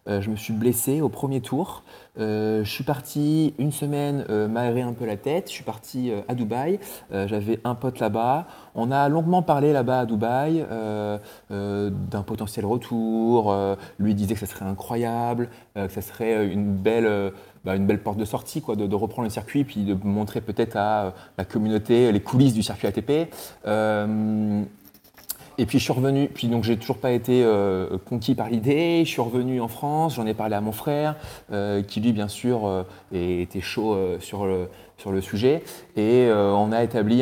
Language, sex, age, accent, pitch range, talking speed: French, male, 20-39, French, 100-125 Hz, 205 wpm